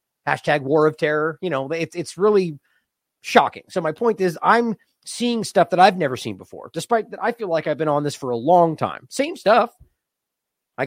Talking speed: 205 wpm